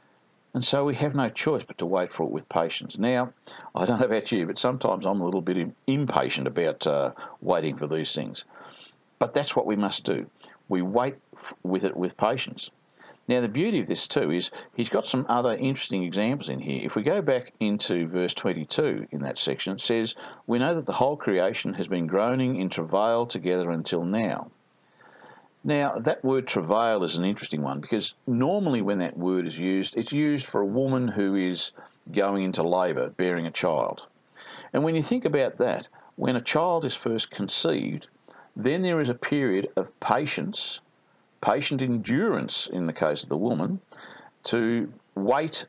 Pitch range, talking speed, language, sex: 90-130 Hz, 185 wpm, English, male